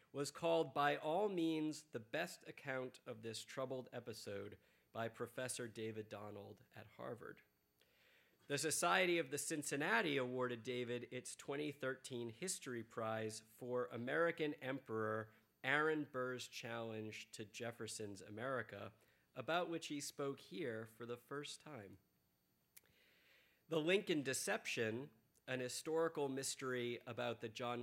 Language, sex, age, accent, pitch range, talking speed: English, male, 40-59, American, 115-145 Hz, 120 wpm